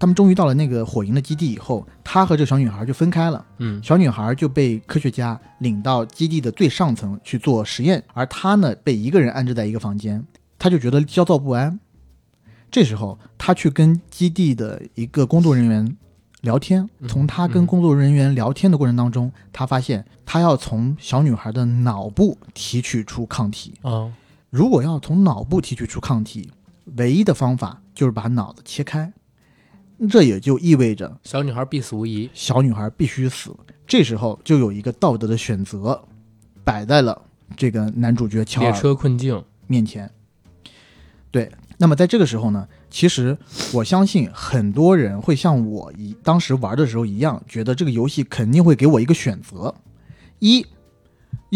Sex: male